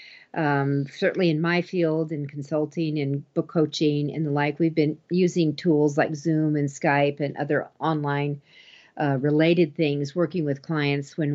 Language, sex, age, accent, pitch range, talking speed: English, female, 50-69, American, 150-210 Hz, 165 wpm